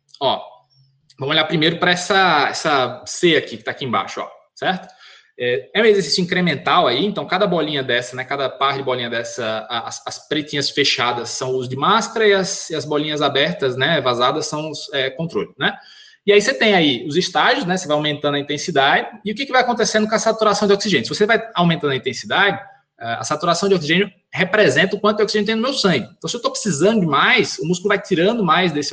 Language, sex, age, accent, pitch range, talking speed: Portuguese, male, 20-39, Brazilian, 140-205 Hz, 220 wpm